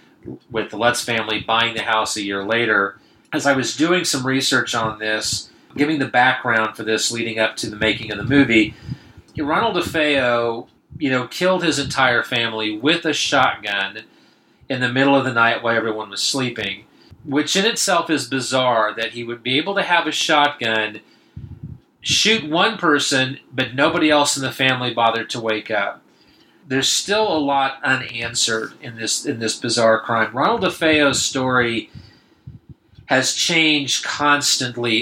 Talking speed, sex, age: 160 wpm, male, 40-59